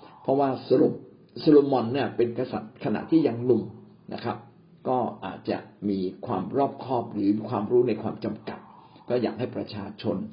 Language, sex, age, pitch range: Thai, male, 60-79, 105-140 Hz